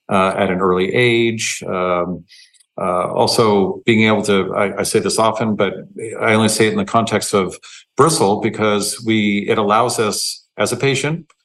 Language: English